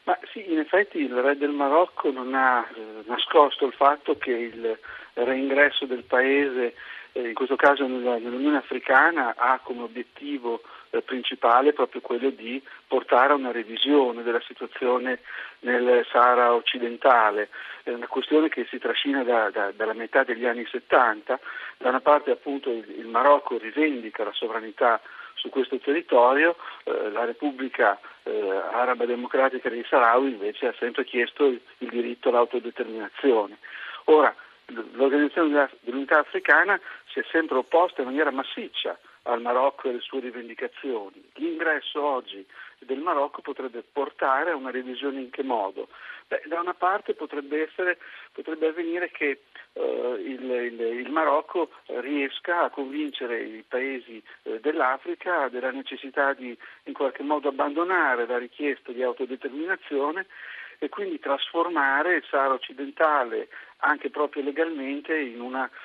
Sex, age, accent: male, 50-69, native